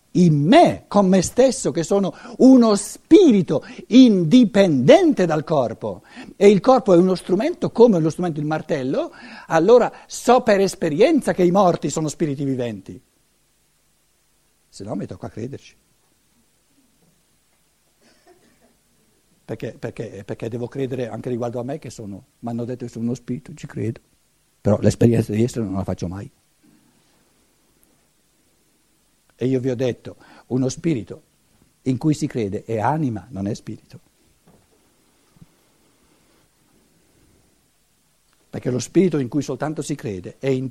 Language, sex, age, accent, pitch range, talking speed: Italian, male, 60-79, native, 120-180 Hz, 135 wpm